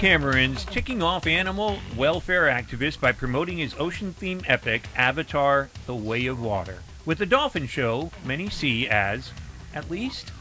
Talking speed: 145 wpm